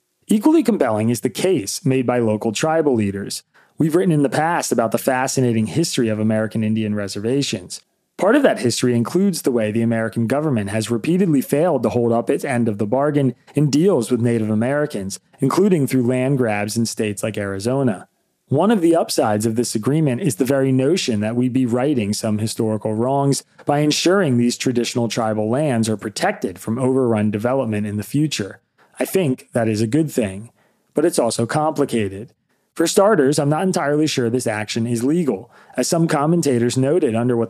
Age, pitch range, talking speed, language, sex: 30-49, 110-145 Hz, 185 wpm, English, male